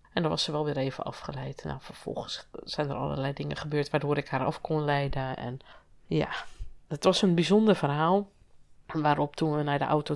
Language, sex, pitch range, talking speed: Dutch, female, 145-180 Hz, 200 wpm